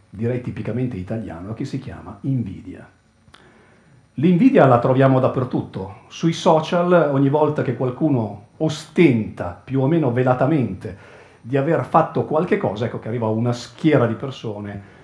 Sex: male